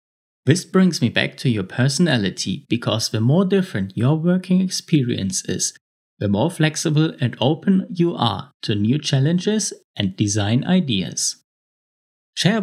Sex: male